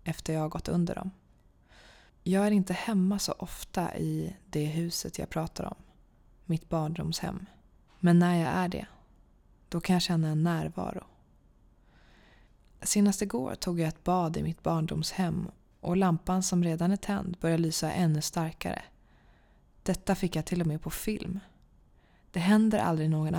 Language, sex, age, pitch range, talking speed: Swedish, female, 20-39, 160-190 Hz, 160 wpm